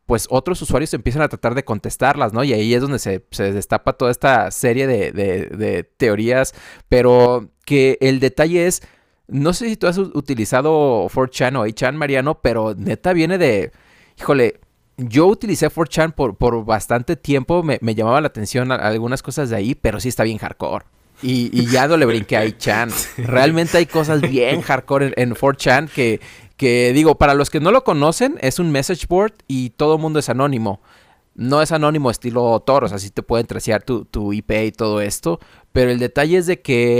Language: Spanish